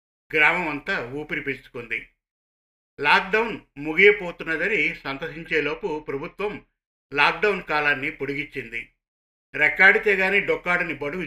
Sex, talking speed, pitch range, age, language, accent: male, 80 wpm, 140-180 Hz, 50-69, Telugu, native